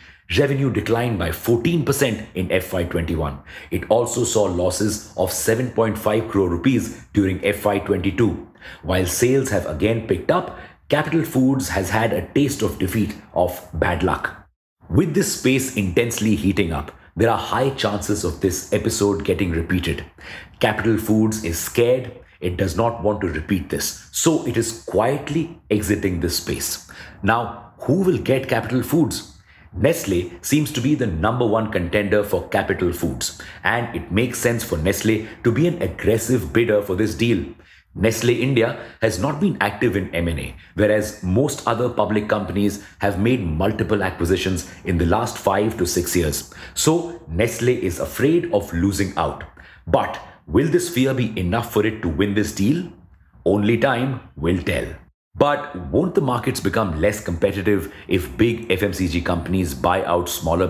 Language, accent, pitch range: English, Indian, 90-115 Hz